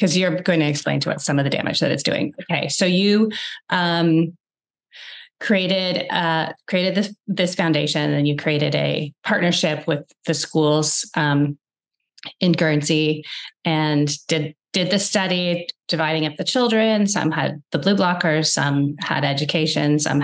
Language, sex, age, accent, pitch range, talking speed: English, female, 30-49, American, 155-185 Hz, 155 wpm